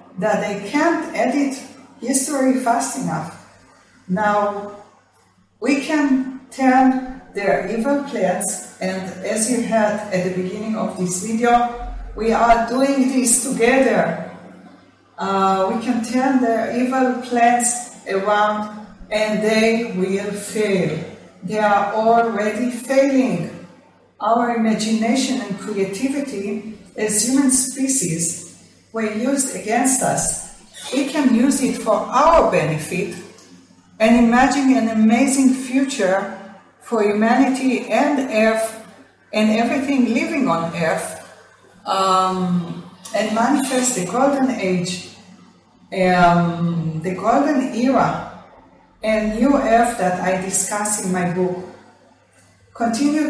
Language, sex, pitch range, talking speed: English, female, 195-255 Hz, 110 wpm